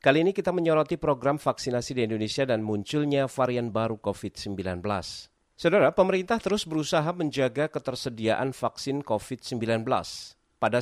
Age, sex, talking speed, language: 40-59, male, 120 wpm, Indonesian